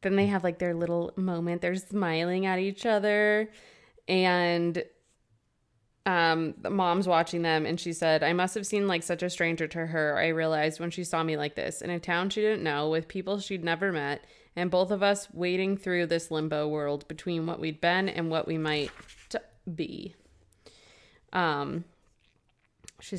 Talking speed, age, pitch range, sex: 185 wpm, 20-39, 160-200 Hz, female